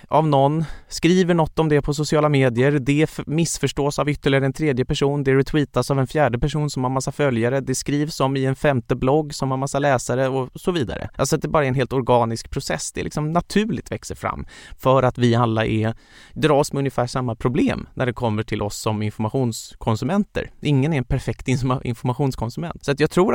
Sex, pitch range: male, 115-145 Hz